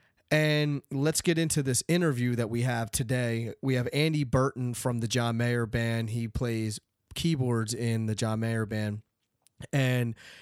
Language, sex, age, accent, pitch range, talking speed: English, male, 30-49, American, 115-140 Hz, 160 wpm